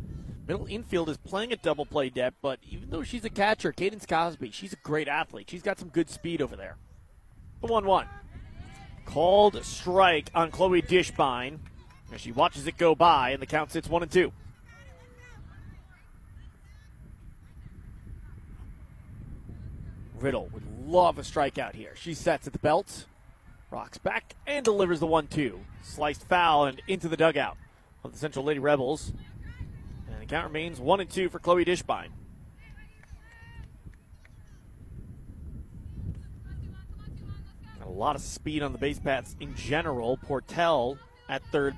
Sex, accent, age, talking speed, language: male, American, 30-49, 140 wpm, English